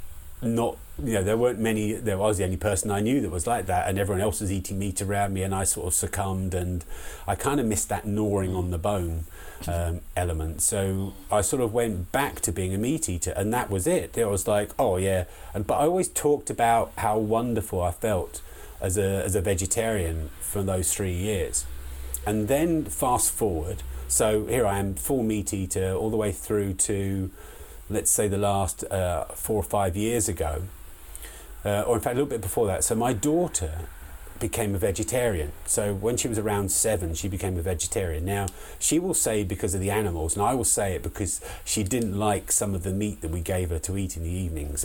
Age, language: 30-49, English